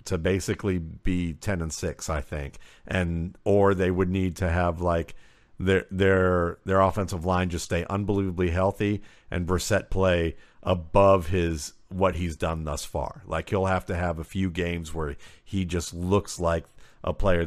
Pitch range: 85-105 Hz